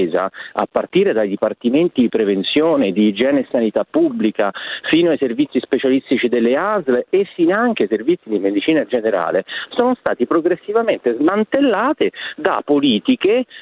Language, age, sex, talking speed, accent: Italian, 40-59, male, 135 wpm, native